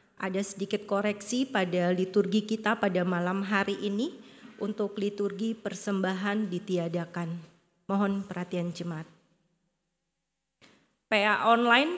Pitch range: 190-225 Hz